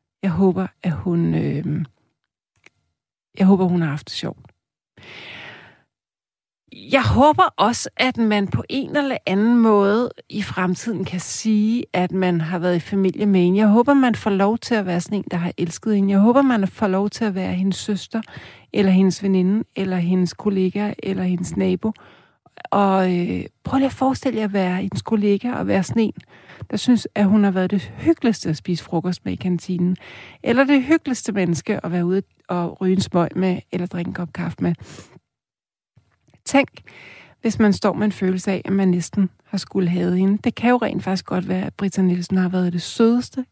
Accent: native